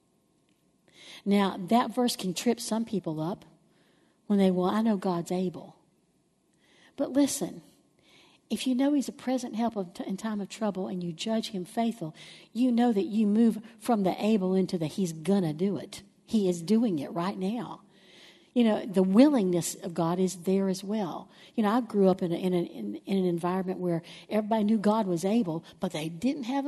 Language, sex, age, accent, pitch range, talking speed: English, female, 60-79, American, 180-235 Hz, 190 wpm